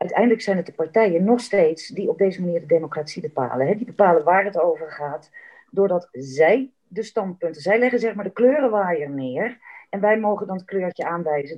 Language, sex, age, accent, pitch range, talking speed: Dutch, female, 40-59, Dutch, 165-260 Hz, 195 wpm